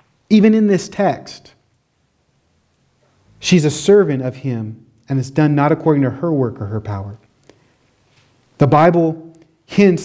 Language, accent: English, American